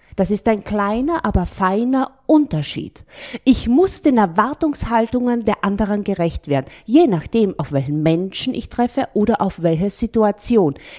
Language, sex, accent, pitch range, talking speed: German, female, German, 175-235 Hz, 140 wpm